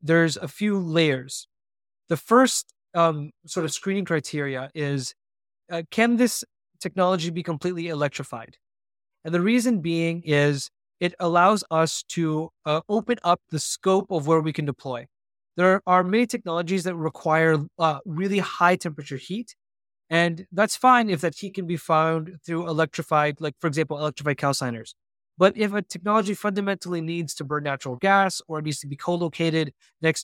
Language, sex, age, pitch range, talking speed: English, male, 20-39, 150-185 Hz, 165 wpm